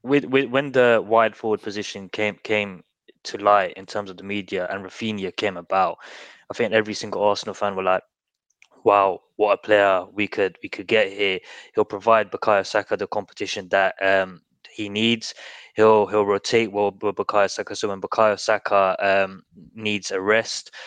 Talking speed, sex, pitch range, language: 180 wpm, male, 100-115 Hz, English